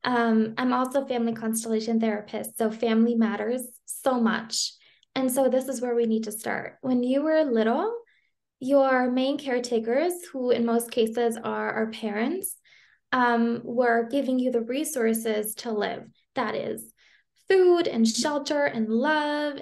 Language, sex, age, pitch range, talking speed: English, female, 20-39, 225-270 Hz, 150 wpm